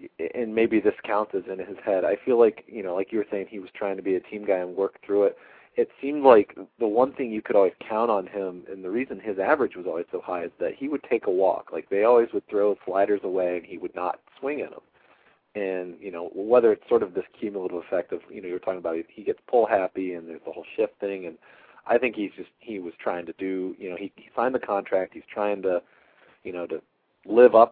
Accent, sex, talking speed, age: American, male, 265 wpm, 40-59